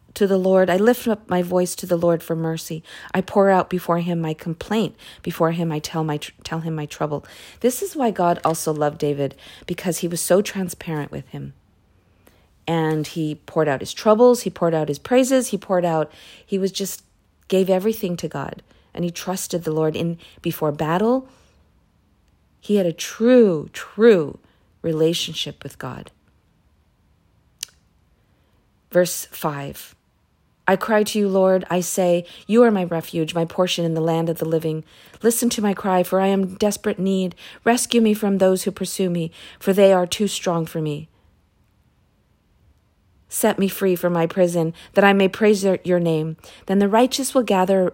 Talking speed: 180 wpm